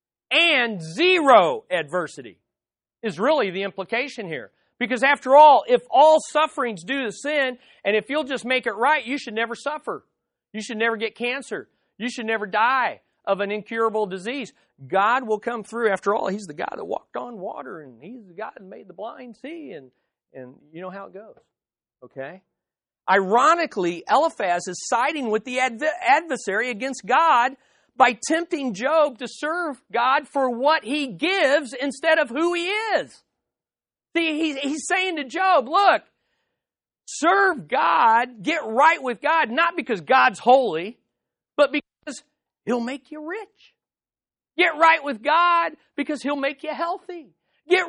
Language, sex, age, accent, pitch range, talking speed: English, male, 40-59, American, 220-315 Hz, 160 wpm